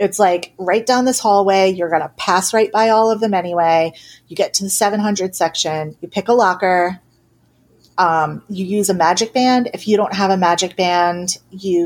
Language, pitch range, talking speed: English, 165-215 Hz, 200 wpm